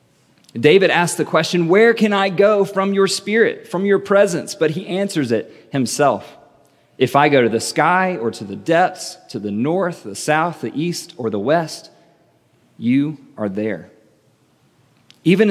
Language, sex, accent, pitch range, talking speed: English, male, American, 135-180 Hz, 165 wpm